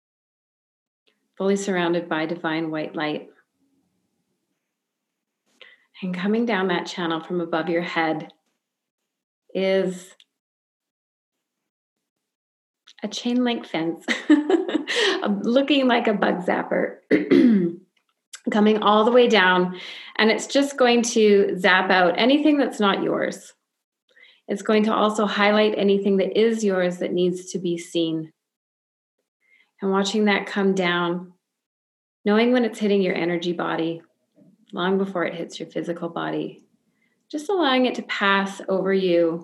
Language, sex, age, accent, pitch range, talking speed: English, female, 30-49, American, 175-225 Hz, 125 wpm